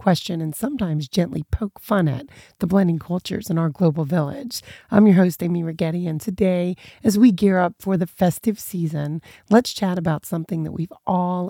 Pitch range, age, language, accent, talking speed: 170-210 Hz, 30-49, English, American, 190 wpm